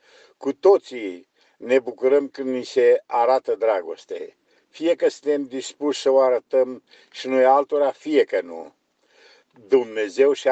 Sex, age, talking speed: male, 50-69, 135 wpm